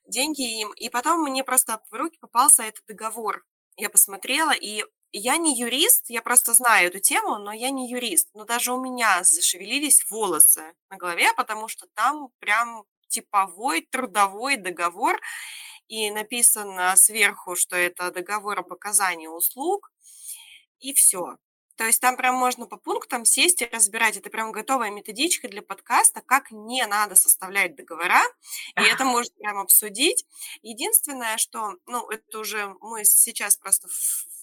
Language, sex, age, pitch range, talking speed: Russian, female, 20-39, 200-270 Hz, 150 wpm